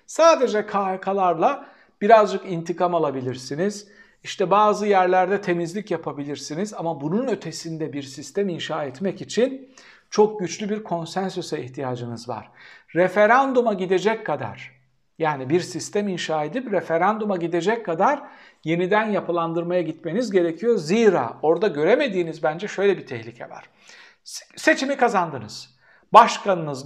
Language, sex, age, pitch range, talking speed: Turkish, male, 60-79, 155-210 Hz, 110 wpm